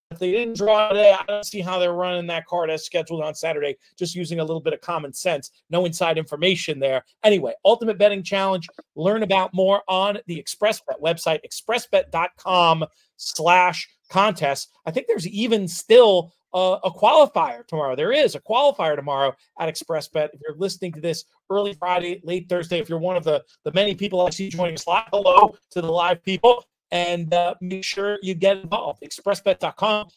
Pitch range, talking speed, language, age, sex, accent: 165-205 Hz, 190 wpm, English, 40-59, male, American